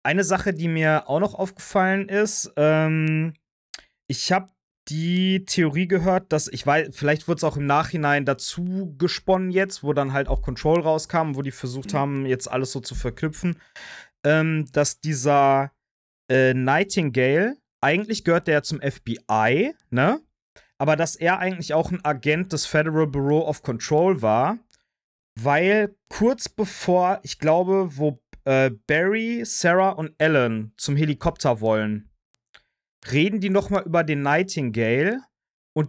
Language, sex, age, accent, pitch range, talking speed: German, male, 30-49, German, 140-185 Hz, 145 wpm